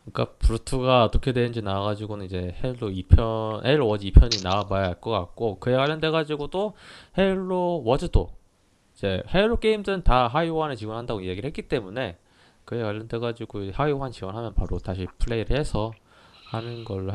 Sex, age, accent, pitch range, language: male, 20-39, native, 95-120 Hz, Korean